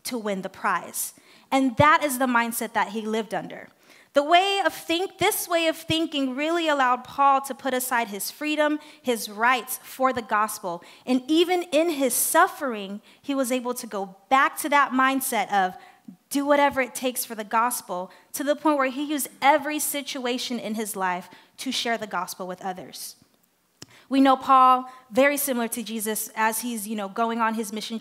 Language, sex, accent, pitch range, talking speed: English, female, American, 210-270 Hz, 190 wpm